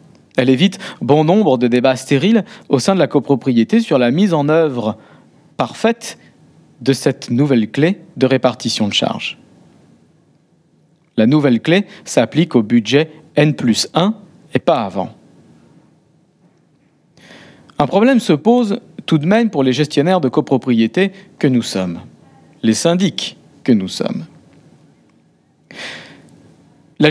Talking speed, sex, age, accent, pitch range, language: 130 wpm, male, 50-69, French, 135-220 Hz, French